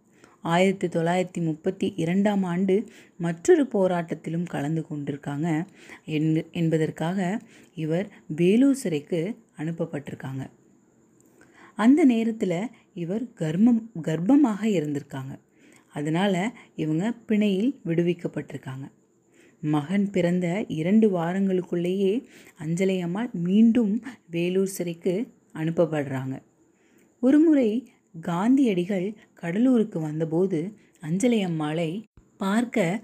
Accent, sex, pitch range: native, female, 160-215 Hz